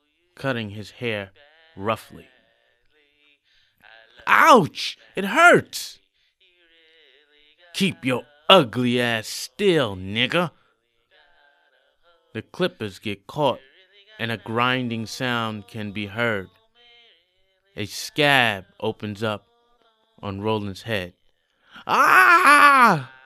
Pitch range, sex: 115-170 Hz, male